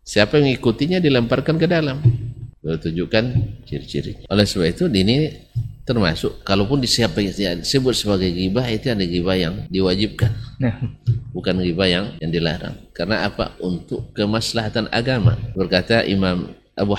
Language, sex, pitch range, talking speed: Indonesian, male, 95-135 Hz, 130 wpm